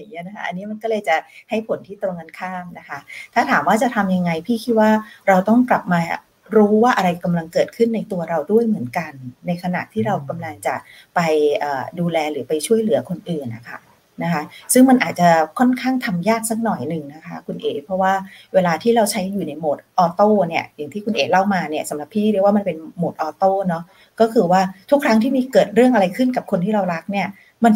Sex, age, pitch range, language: female, 30-49, 175-220 Hz, English